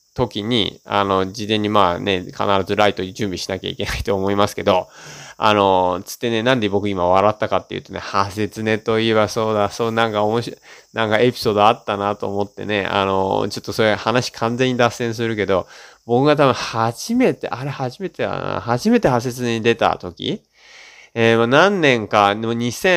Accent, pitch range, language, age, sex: native, 100-135 Hz, Japanese, 20-39, male